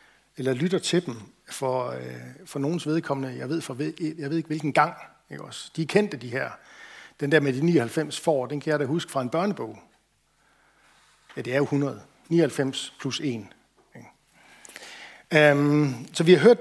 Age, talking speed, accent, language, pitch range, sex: 60-79, 170 wpm, native, Danish, 125-155 Hz, male